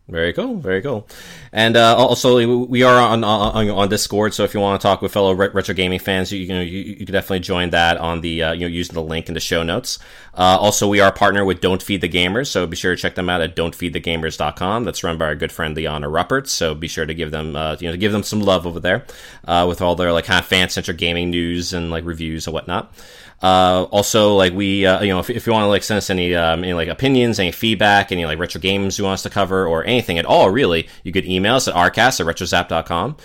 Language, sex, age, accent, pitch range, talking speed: English, male, 30-49, American, 85-100 Hz, 265 wpm